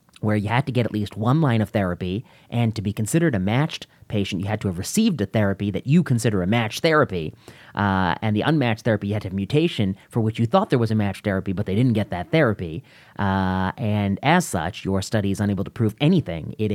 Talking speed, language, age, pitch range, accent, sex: 245 wpm, English, 30-49, 100-120 Hz, American, male